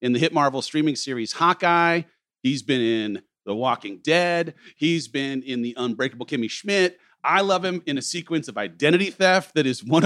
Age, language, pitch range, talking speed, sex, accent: 40-59, English, 130-180 Hz, 190 wpm, male, American